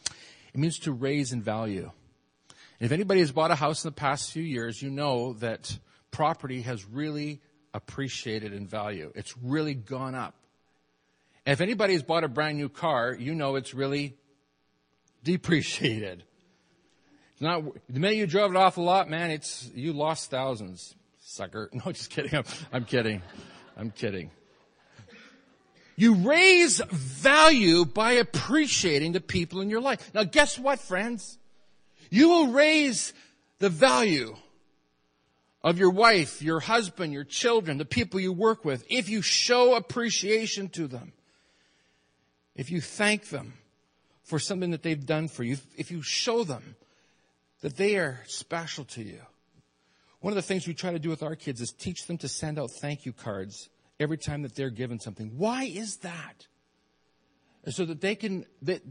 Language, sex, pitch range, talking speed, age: English, male, 110-180 Hz, 165 wpm, 40-59